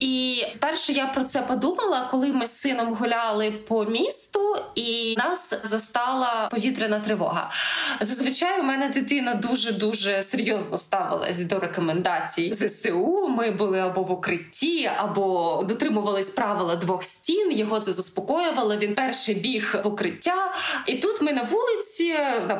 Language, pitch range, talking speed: Ukrainian, 205-290 Hz, 140 wpm